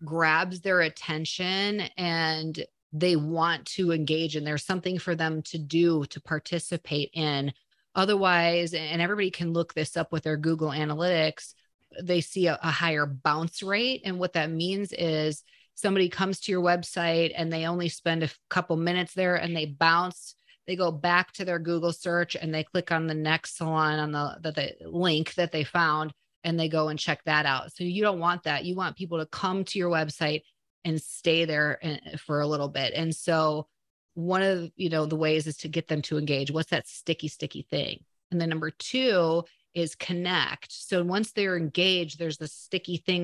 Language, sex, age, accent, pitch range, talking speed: English, female, 30-49, American, 155-180 Hz, 195 wpm